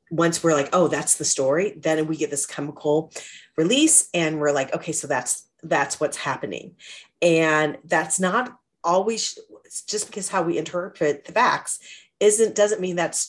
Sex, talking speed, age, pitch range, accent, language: female, 165 wpm, 40-59, 150-190 Hz, American, English